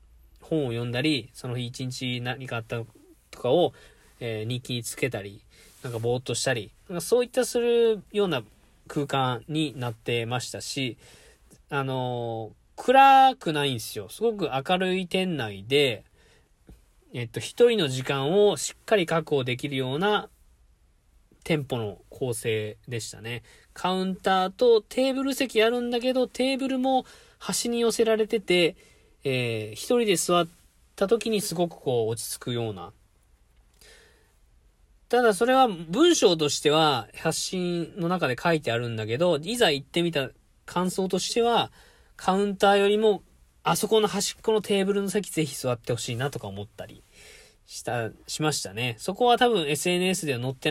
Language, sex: Japanese, male